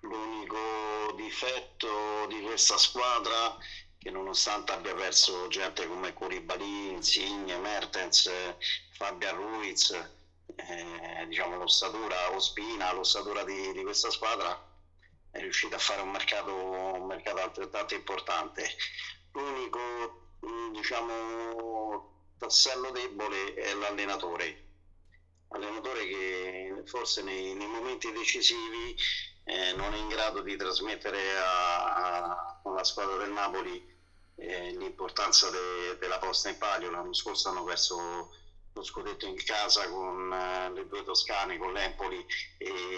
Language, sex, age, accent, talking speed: Italian, male, 40-59, native, 115 wpm